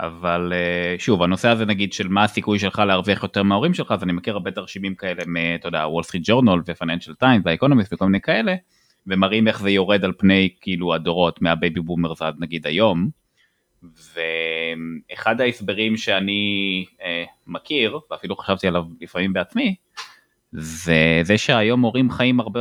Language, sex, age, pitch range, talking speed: Hebrew, male, 20-39, 85-105 Hz, 150 wpm